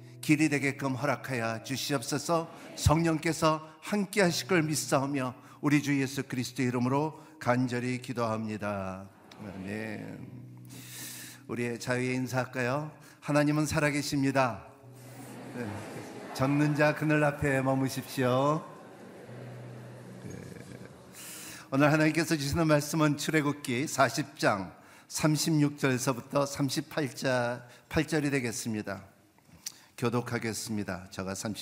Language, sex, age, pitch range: Korean, male, 50-69, 115-150 Hz